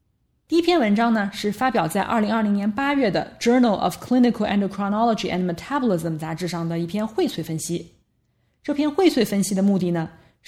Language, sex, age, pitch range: Chinese, female, 20-39, 180-245 Hz